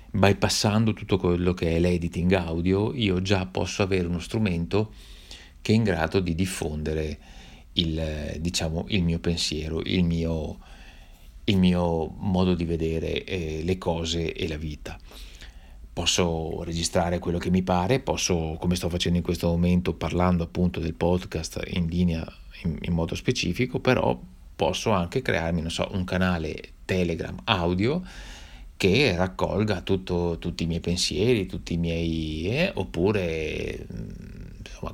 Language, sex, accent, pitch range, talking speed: Italian, male, native, 80-95 Hz, 145 wpm